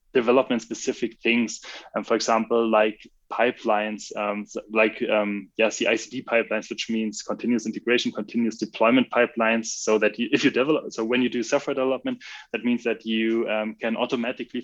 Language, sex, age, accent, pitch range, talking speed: English, male, 10-29, German, 110-130 Hz, 165 wpm